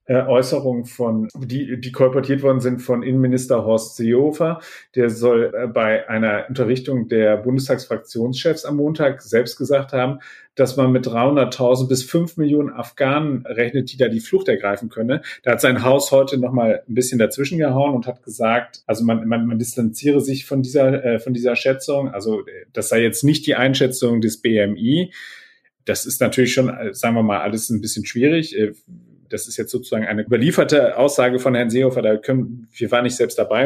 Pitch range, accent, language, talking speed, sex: 110-135 Hz, German, German, 180 wpm, male